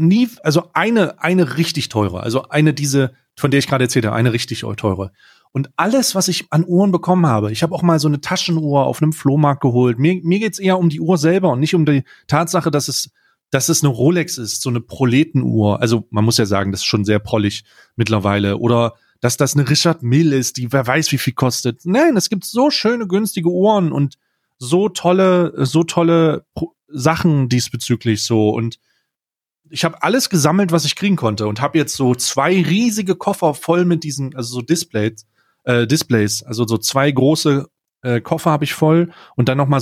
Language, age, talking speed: German, 30-49, 205 wpm